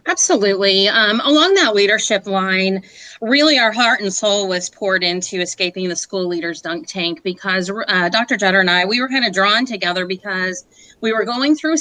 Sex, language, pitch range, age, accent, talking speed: female, English, 185-225 Hz, 30-49, American, 190 wpm